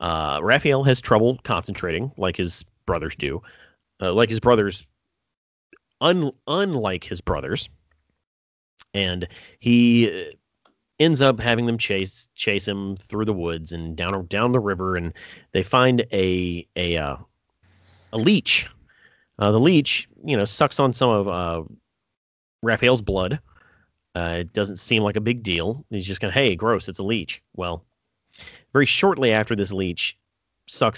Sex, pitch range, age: male, 90-120 Hz, 30-49